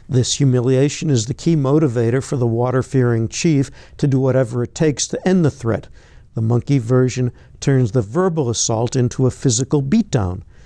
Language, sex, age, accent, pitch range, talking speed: English, male, 60-79, American, 115-140 Hz, 170 wpm